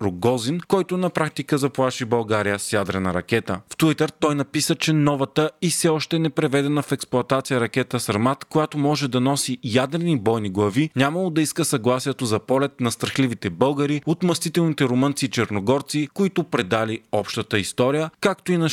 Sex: male